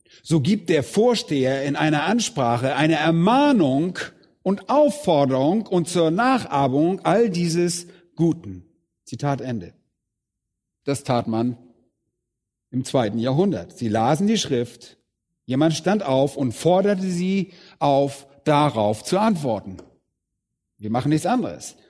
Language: German